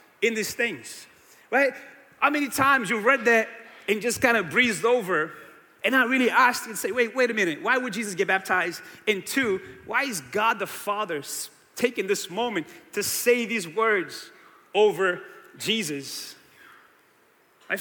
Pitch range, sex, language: 210-275 Hz, male, English